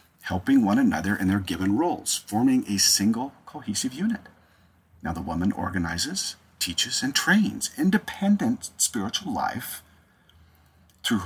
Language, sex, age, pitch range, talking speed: English, male, 50-69, 95-125 Hz, 125 wpm